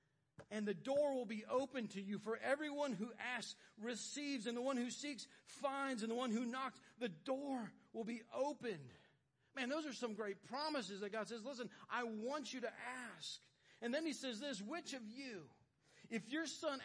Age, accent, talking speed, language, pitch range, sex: 40-59, American, 195 wpm, English, 175-255 Hz, male